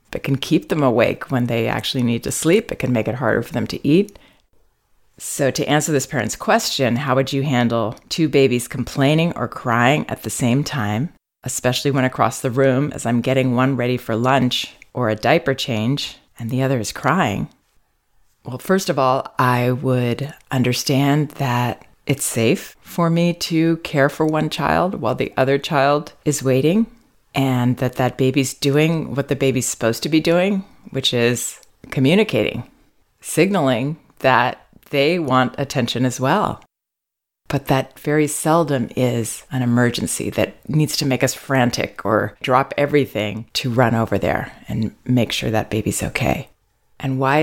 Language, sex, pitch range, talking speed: English, female, 125-150 Hz, 170 wpm